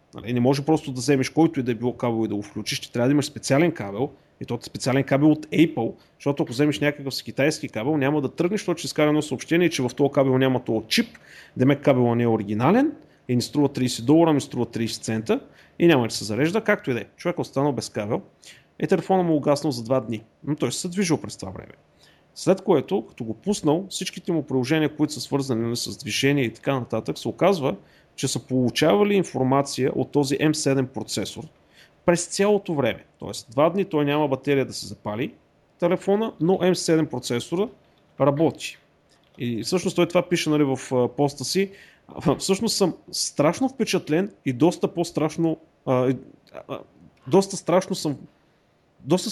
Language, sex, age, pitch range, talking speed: Bulgarian, male, 30-49, 125-170 Hz, 190 wpm